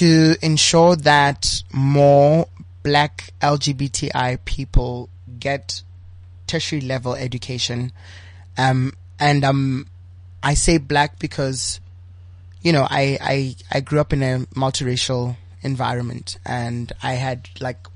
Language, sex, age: English, male, 20-39